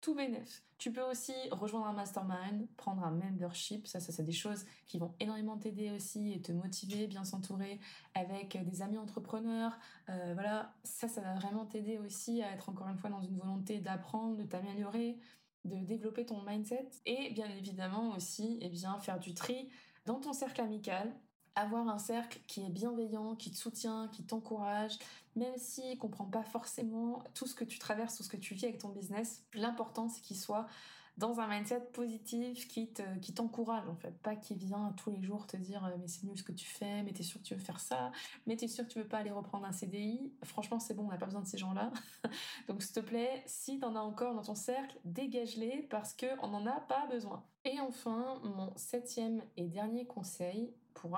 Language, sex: French, female